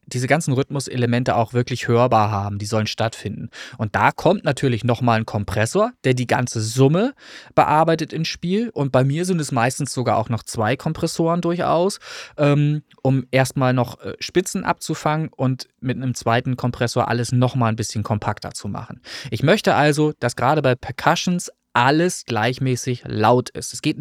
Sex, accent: male, German